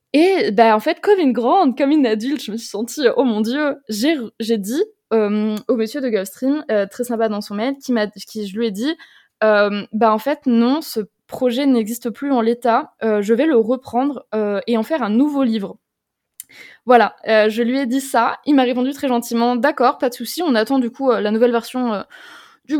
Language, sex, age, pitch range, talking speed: French, female, 20-39, 220-275 Hz, 230 wpm